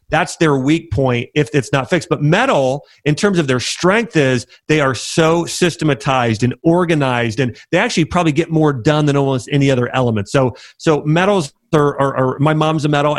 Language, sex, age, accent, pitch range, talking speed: English, male, 40-59, American, 135-180 Hz, 200 wpm